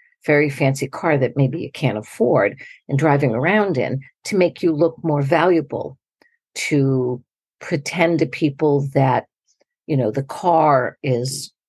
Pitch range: 135-200 Hz